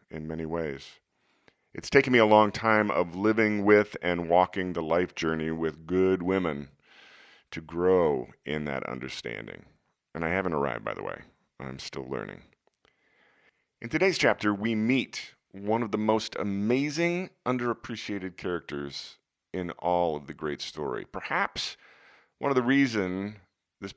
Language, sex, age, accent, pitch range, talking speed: English, male, 40-59, American, 80-105 Hz, 150 wpm